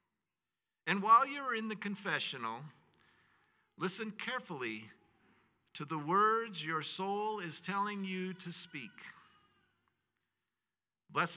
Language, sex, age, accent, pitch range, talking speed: English, male, 50-69, American, 145-195 Hz, 100 wpm